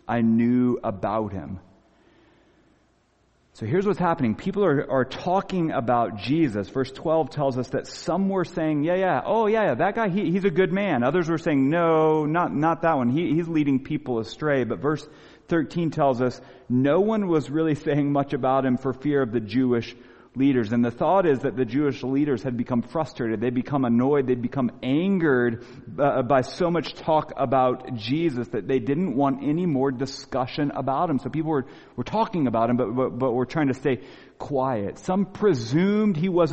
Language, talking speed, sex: English, 195 wpm, male